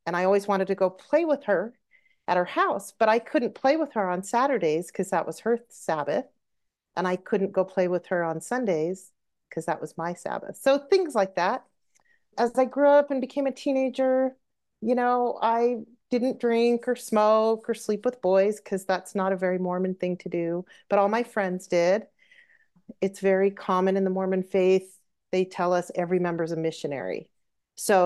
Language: English